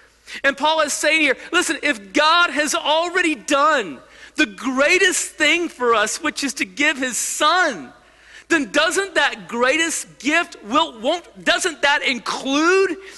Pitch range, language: 225-320 Hz, English